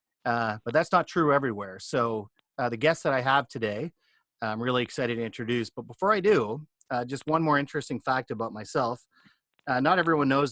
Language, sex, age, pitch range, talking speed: English, male, 40-59, 110-135 Hz, 200 wpm